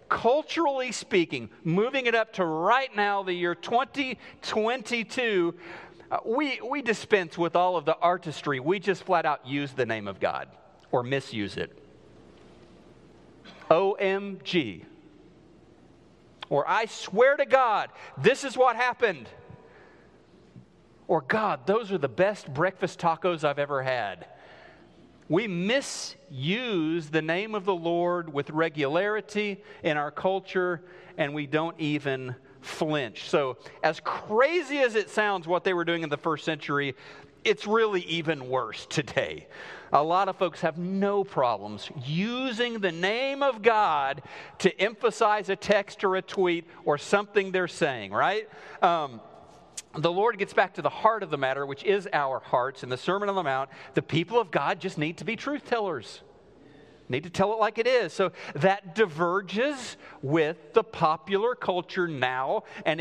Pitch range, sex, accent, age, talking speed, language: 155-215 Hz, male, American, 40-59, 150 wpm, English